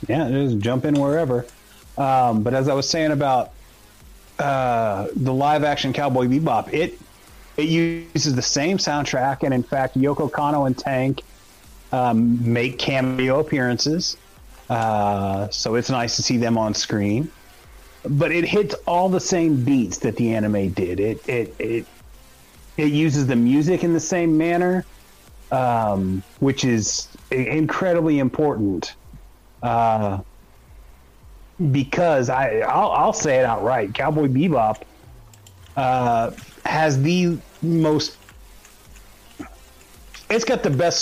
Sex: male